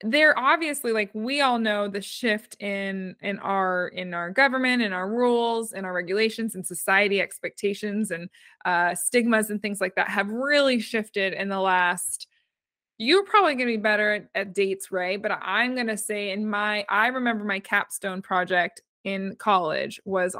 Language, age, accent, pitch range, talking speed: English, 20-39, American, 195-235 Hz, 175 wpm